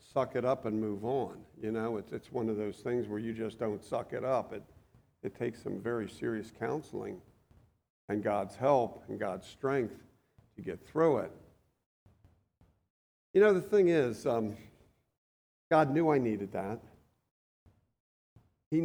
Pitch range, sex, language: 110-155 Hz, male, English